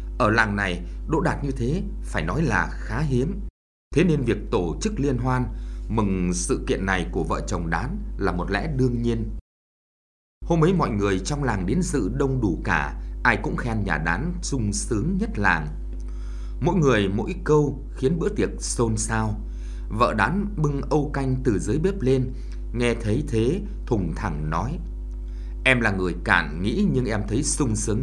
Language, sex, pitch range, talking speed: Vietnamese, male, 90-145 Hz, 185 wpm